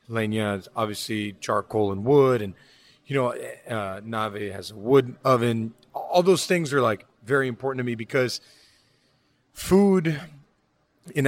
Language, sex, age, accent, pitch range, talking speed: English, male, 30-49, American, 110-145 Hz, 140 wpm